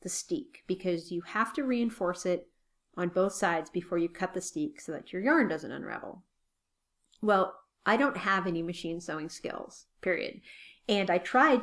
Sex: female